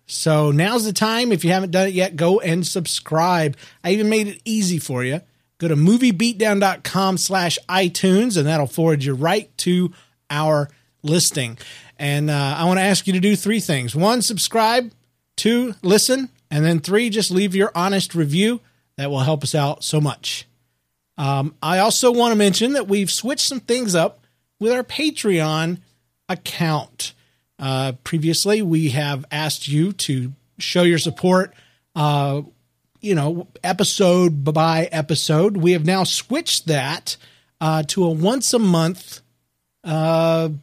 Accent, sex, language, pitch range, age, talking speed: American, male, English, 145-195 Hz, 40-59, 160 wpm